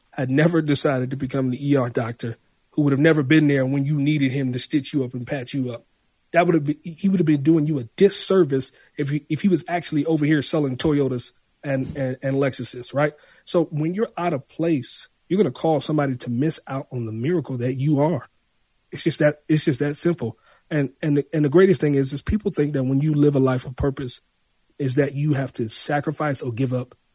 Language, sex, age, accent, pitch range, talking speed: English, male, 40-59, American, 130-160 Hz, 235 wpm